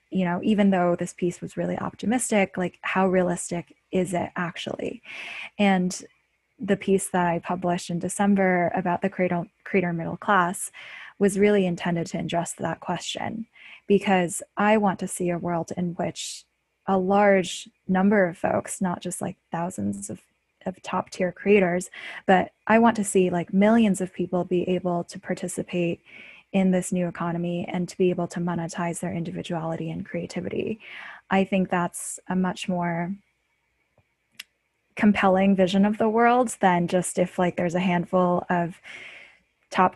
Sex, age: female, 10-29